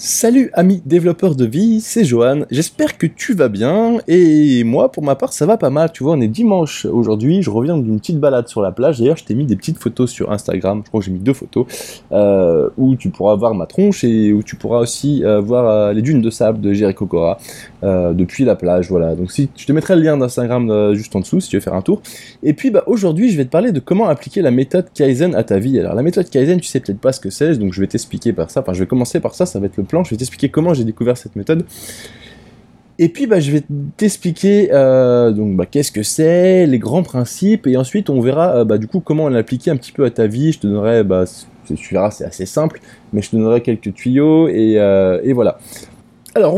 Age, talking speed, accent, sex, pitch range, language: 20-39, 260 wpm, French, male, 110-170 Hz, French